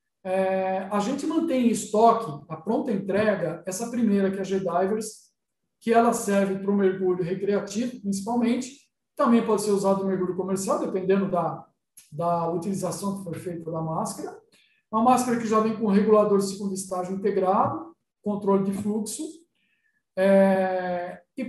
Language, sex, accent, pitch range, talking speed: Portuguese, male, Brazilian, 190-235 Hz, 155 wpm